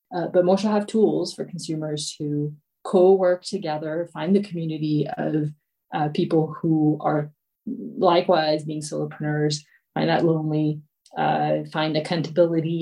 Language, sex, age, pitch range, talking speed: English, female, 30-49, 150-175 Hz, 125 wpm